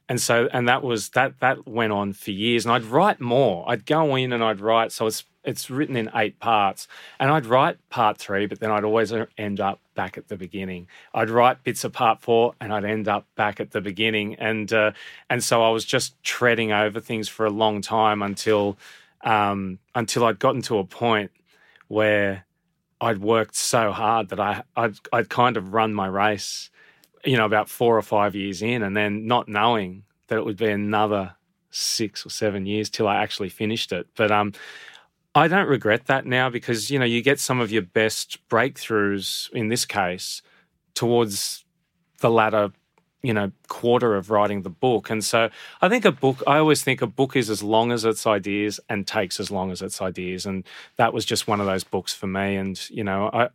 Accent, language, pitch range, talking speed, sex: Australian, English, 105-120 Hz, 210 wpm, male